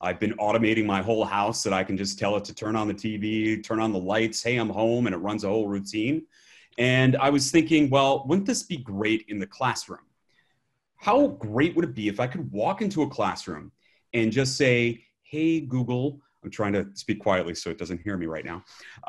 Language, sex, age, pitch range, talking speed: English, male, 30-49, 105-130 Hz, 225 wpm